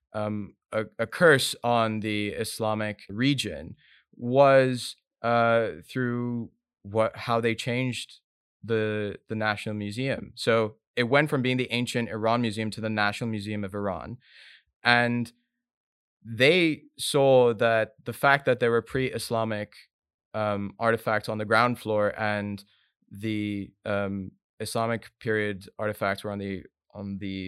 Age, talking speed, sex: 20-39, 135 wpm, male